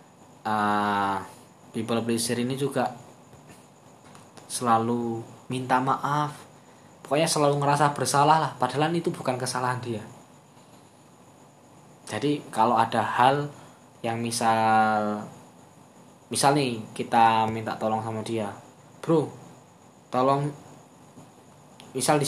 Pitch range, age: 115-140 Hz, 10-29